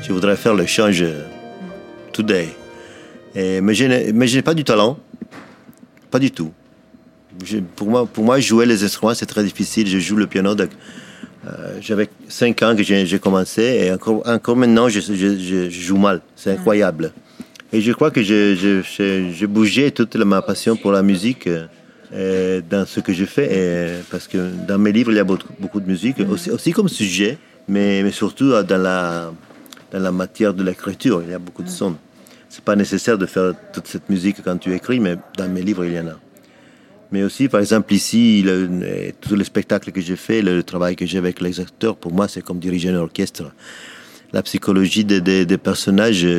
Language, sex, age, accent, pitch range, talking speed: French, male, 40-59, French, 90-105 Hz, 205 wpm